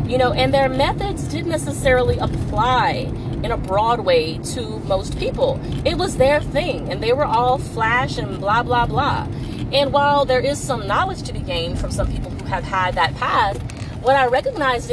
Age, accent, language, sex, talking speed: 30-49, American, English, female, 195 wpm